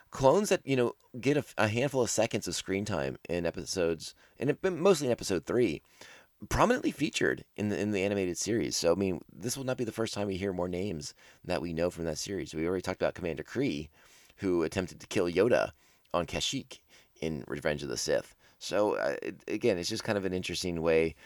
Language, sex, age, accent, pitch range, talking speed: English, male, 30-49, American, 85-115 Hz, 225 wpm